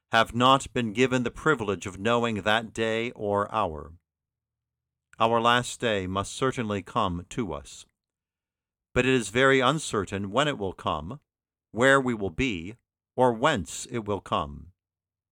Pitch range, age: 90-125 Hz, 50-69